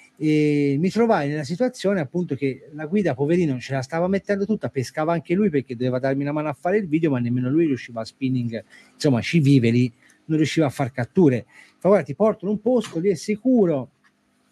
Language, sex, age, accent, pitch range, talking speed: Italian, male, 40-59, native, 140-210 Hz, 215 wpm